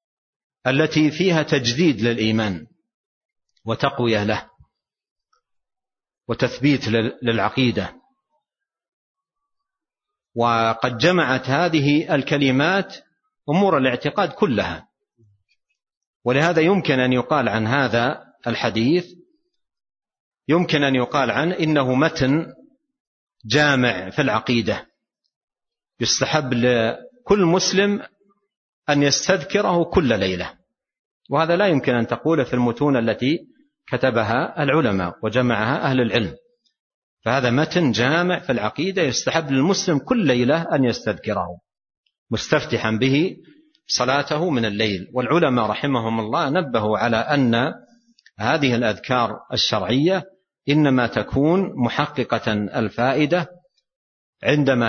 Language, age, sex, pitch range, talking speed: Arabic, 50-69, male, 120-190 Hz, 90 wpm